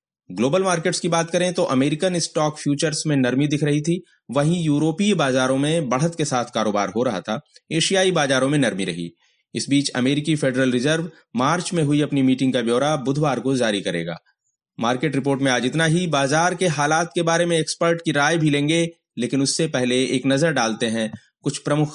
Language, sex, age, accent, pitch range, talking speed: Hindi, male, 30-49, native, 125-165 Hz, 195 wpm